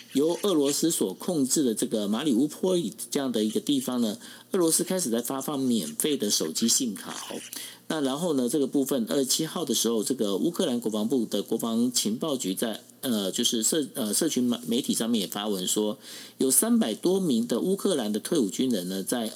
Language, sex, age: Chinese, male, 50-69